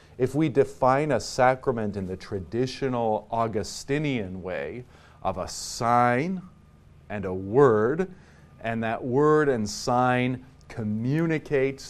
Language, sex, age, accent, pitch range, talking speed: English, male, 40-59, American, 90-130 Hz, 110 wpm